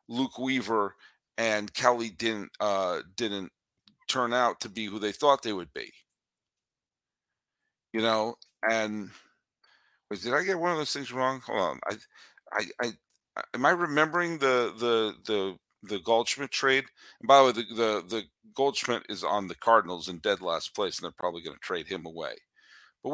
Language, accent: English, American